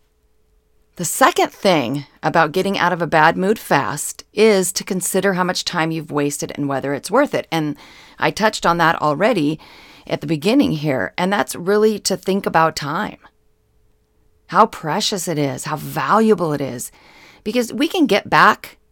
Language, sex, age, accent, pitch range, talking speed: English, female, 40-59, American, 155-215 Hz, 170 wpm